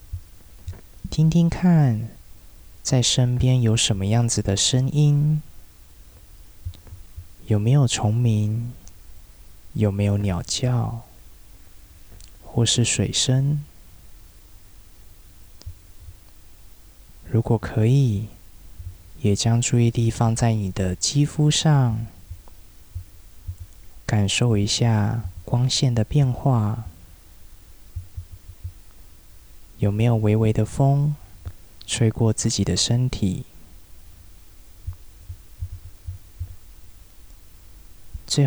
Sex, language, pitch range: male, Chinese, 90-115 Hz